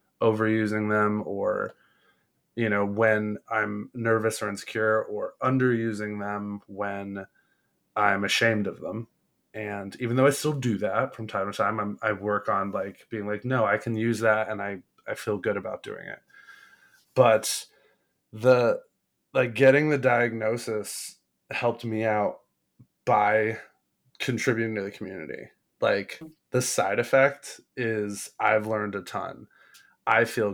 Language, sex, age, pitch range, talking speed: English, male, 20-39, 105-125 Hz, 145 wpm